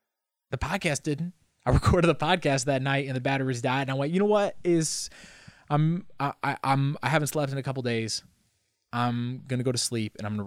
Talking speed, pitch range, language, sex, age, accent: 240 wpm, 105-135 Hz, English, male, 20-39, American